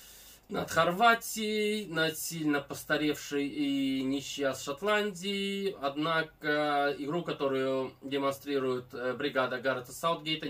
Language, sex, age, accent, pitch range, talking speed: Russian, male, 20-39, native, 135-165 Hz, 85 wpm